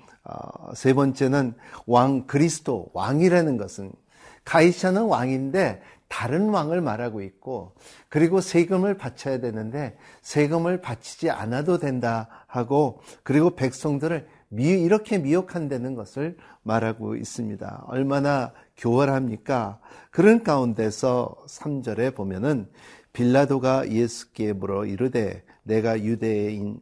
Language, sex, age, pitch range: Korean, male, 50-69, 115-155 Hz